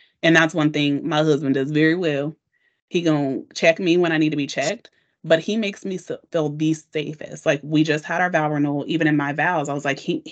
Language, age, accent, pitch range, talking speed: English, 30-49, American, 145-170 Hz, 240 wpm